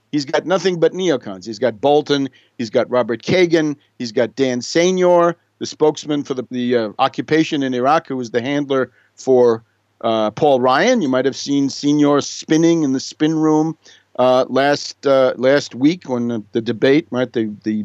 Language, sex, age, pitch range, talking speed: English, male, 50-69, 125-155 Hz, 185 wpm